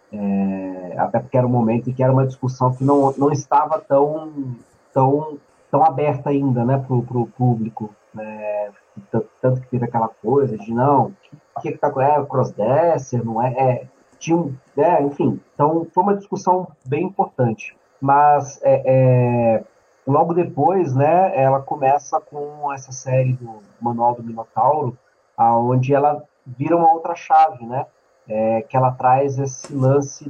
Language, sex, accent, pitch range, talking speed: English, male, Brazilian, 125-155 Hz, 155 wpm